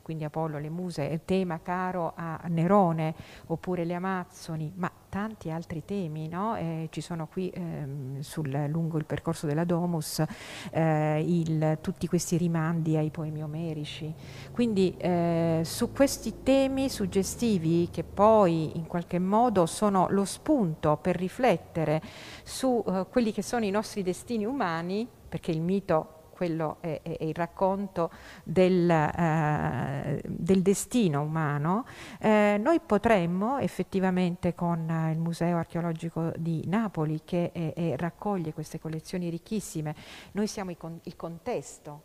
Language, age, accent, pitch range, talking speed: Italian, 50-69, native, 155-190 Hz, 135 wpm